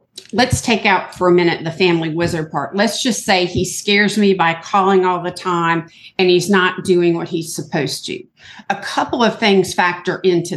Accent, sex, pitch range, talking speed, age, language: American, female, 170-205 Hz, 200 wpm, 50-69, English